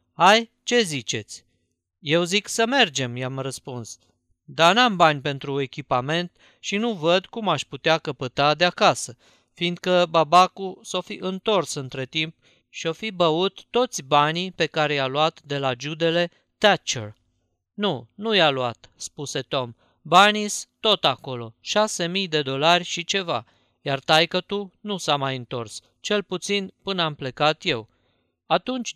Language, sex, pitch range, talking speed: Romanian, male, 130-180 Hz, 150 wpm